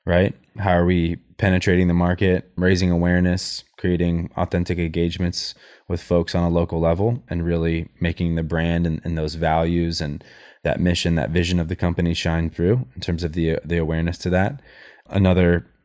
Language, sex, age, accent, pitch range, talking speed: English, male, 20-39, American, 85-95 Hz, 175 wpm